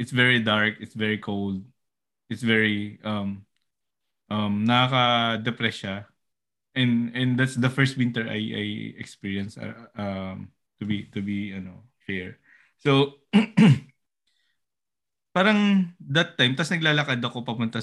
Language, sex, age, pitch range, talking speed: Filipino, male, 20-39, 105-145 Hz, 130 wpm